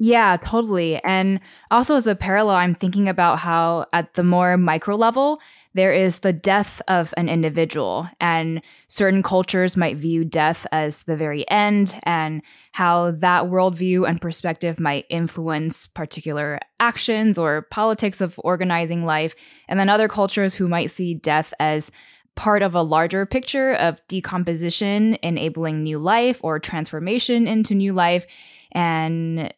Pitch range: 160-195 Hz